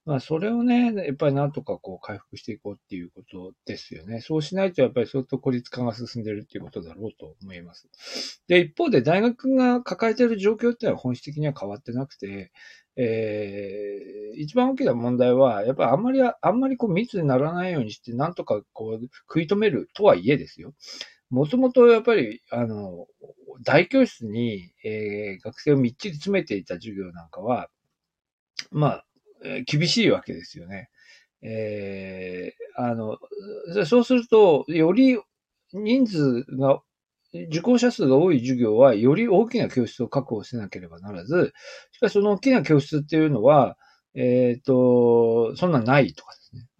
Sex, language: male, Japanese